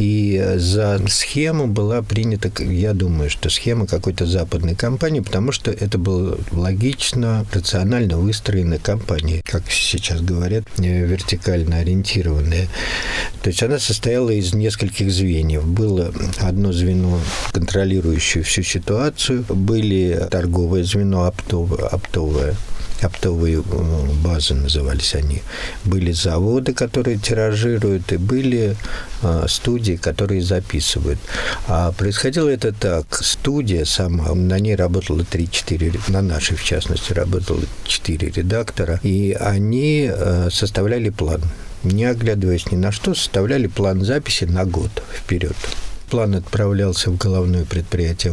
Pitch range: 90-110 Hz